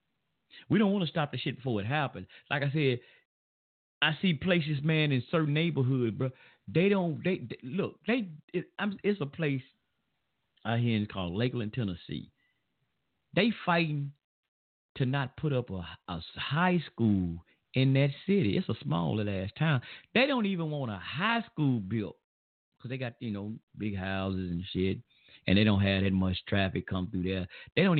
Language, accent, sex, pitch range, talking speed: English, American, male, 100-160 Hz, 175 wpm